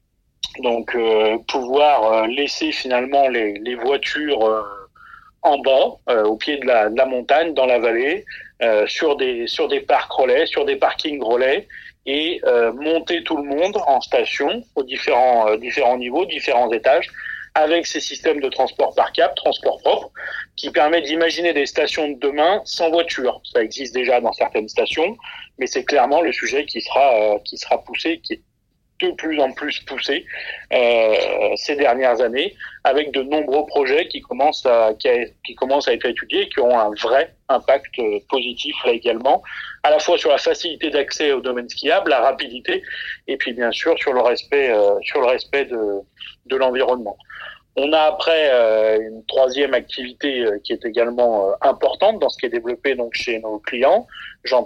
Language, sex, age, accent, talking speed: English, male, 40-59, French, 170 wpm